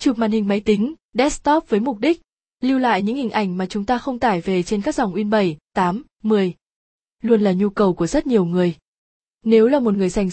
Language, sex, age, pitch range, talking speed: Vietnamese, female, 20-39, 195-235 Hz, 230 wpm